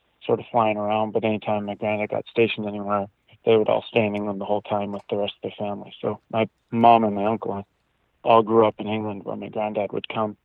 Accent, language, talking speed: American, English, 245 wpm